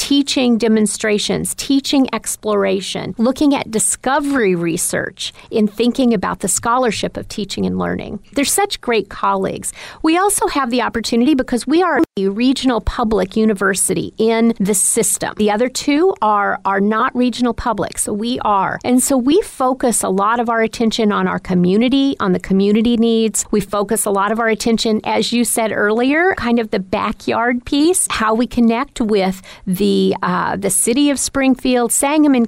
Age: 40-59